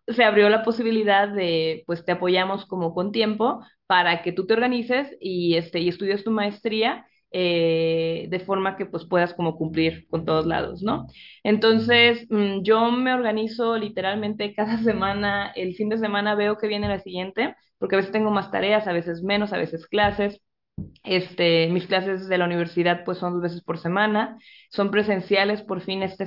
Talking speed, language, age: 180 wpm, Spanish, 20-39